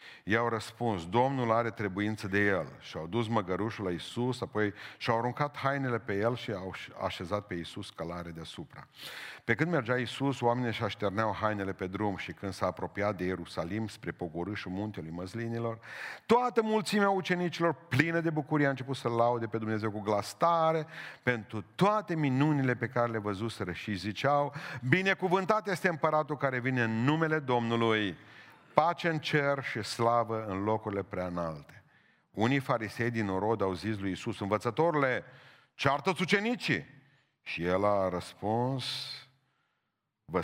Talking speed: 150 wpm